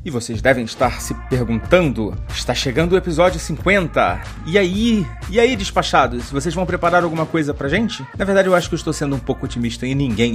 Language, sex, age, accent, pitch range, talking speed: Portuguese, male, 30-49, Brazilian, 130-180 Hz, 210 wpm